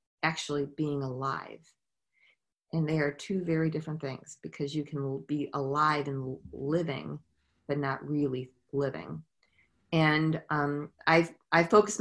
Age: 30-49